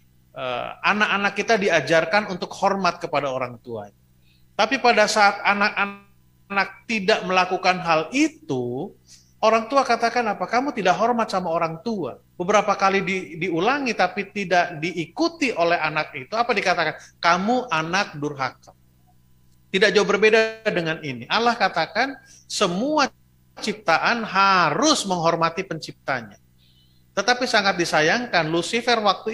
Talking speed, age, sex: 120 wpm, 30-49, male